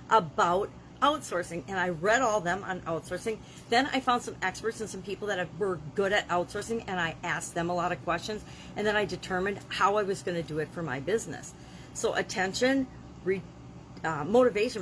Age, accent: 50-69, American